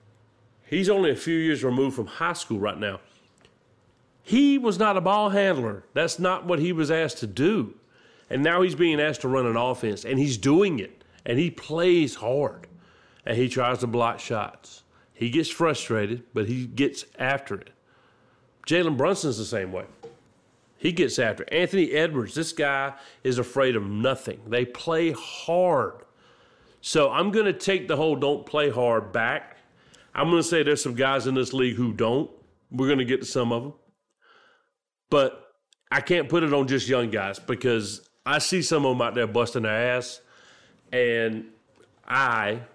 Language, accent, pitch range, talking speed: English, American, 115-150 Hz, 180 wpm